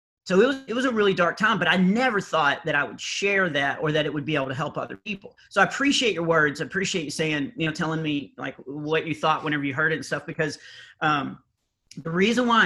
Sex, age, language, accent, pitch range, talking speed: male, 40-59, English, American, 150-175 Hz, 265 wpm